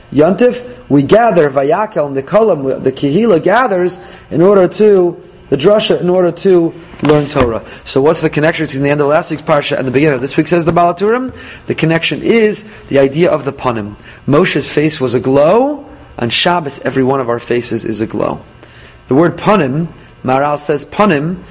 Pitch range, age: 130-165 Hz, 30-49